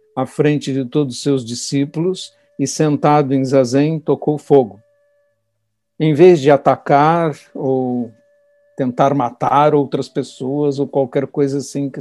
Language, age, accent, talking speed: Portuguese, 60-79, Brazilian, 135 wpm